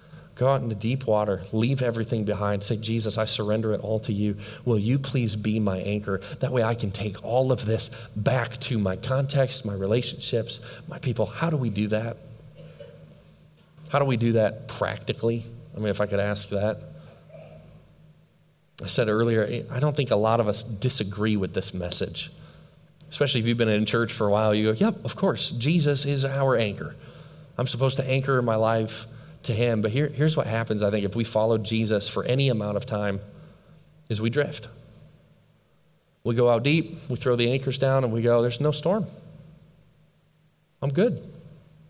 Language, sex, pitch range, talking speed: English, male, 110-145 Hz, 190 wpm